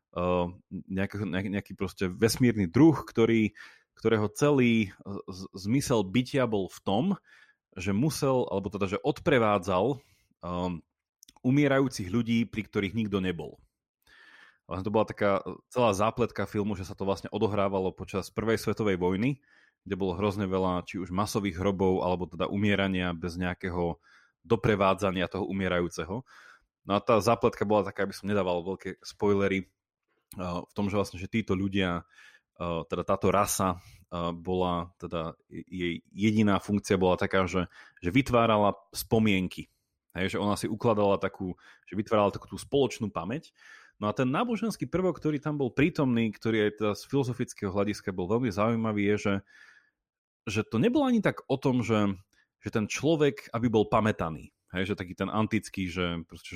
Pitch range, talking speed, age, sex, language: 95-115 Hz, 145 wpm, 30-49, male, Slovak